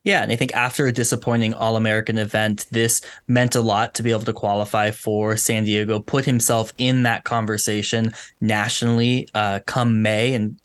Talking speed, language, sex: 175 wpm, English, male